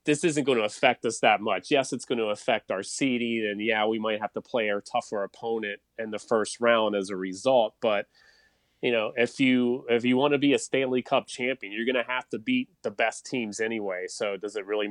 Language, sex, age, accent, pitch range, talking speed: English, male, 30-49, American, 105-130 Hz, 240 wpm